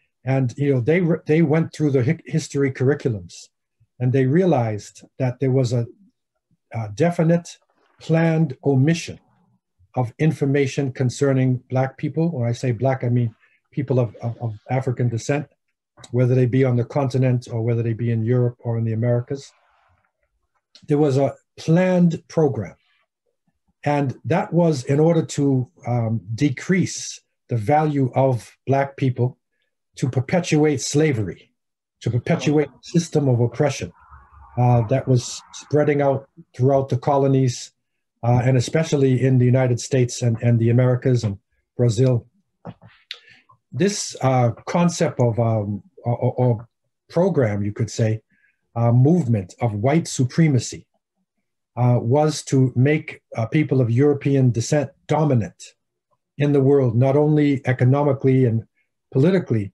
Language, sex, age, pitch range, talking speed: English, male, 50-69, 120-150 Hz, 140 wpm